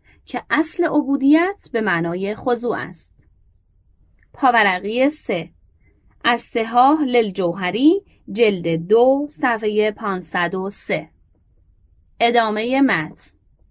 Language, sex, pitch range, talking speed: Persian, female, 195-285 Hz, 90 wpm